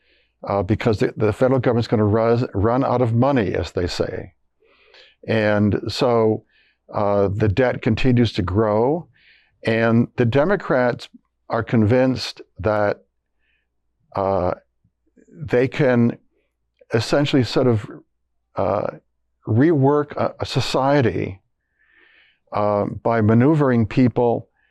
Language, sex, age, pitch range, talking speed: English, male, 60-79, 105-125 Hz, 110 wpm